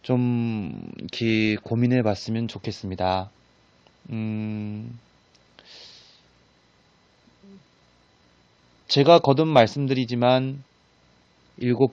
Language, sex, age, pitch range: Korean, male, 30-49, 95-130 Hz